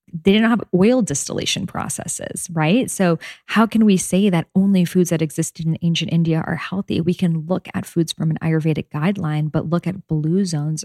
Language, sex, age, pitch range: English, female, 10-29, 155-180 Hz